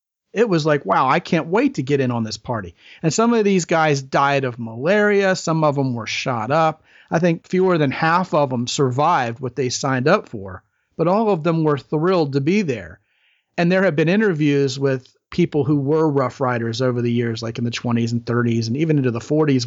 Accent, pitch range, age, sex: American, 125-165 Hz, 40-59, male